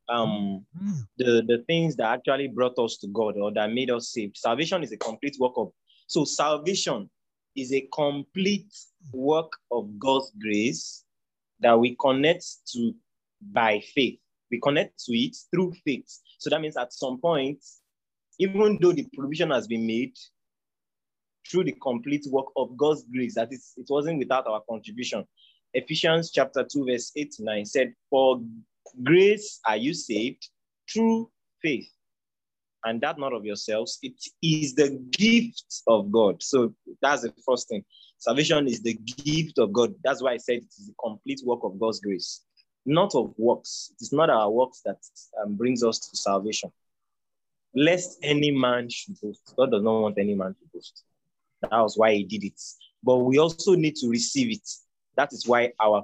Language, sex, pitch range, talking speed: English, male, 115-165 Hz, 170 wpm